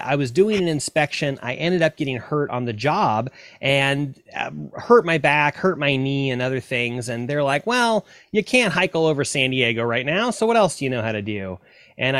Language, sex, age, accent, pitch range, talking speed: English, male, 30-49, American, 125-170 Hz, 230 wpm